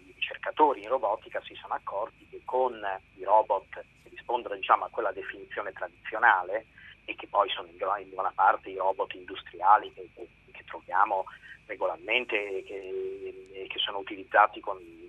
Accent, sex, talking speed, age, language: native, male, 145 wpm, 40-59, Italian